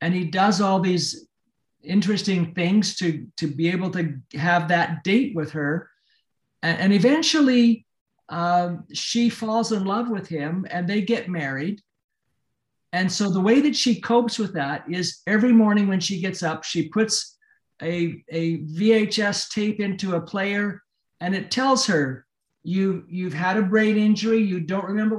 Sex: male